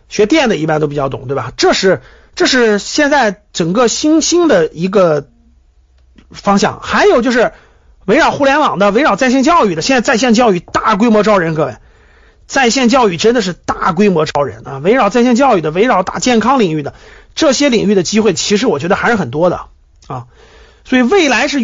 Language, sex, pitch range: Chinese, male, 180-260 Hz